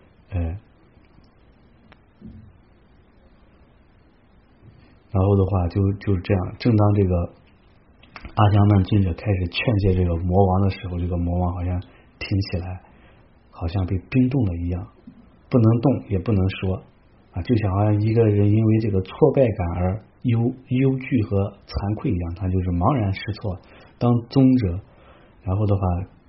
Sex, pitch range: male, 90-110 Hz